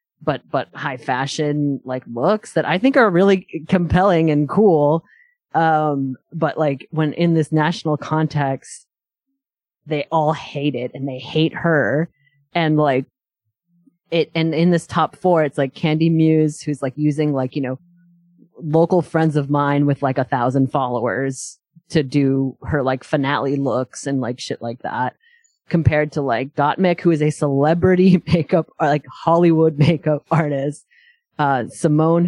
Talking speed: 155 wpm